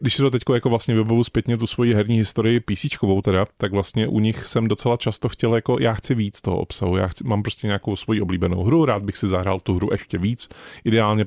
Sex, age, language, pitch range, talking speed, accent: male, 30-49, Czech, 100-115 Hz, 240 wpm, native